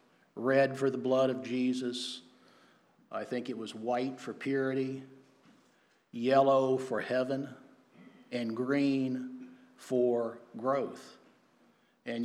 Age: 60-79